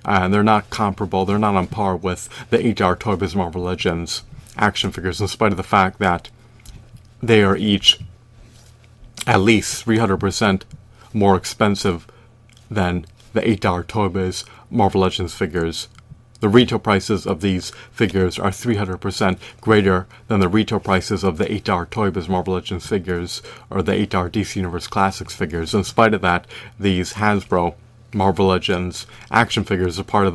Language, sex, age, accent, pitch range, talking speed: English, male, 30-49, American, 95-115 Hz, 150 wpm